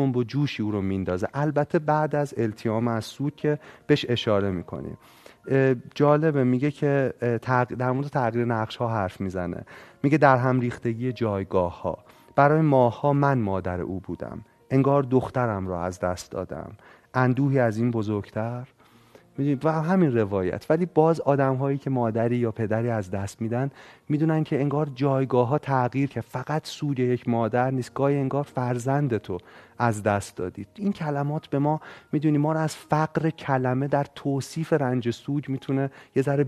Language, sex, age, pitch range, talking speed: Persian, male, 30-49, 115-145 Hz, 160 wpm